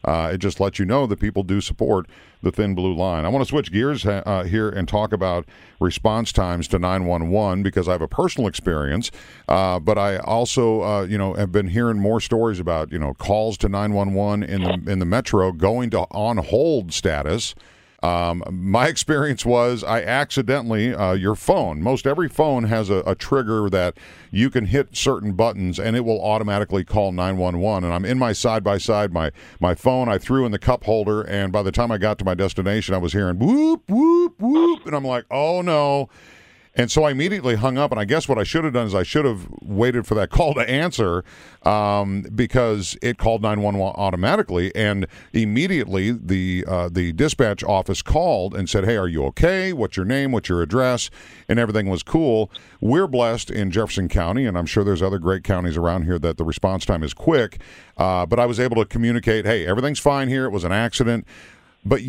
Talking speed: 210 wpm